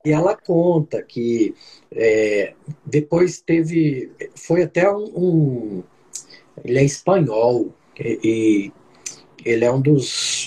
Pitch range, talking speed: 130-180 Hz, 115 wpm